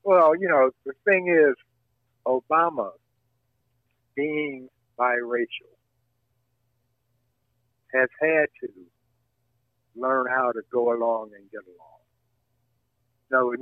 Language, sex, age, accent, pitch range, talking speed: English, male, 50-69, American, 120-135 Hz, 95 wpm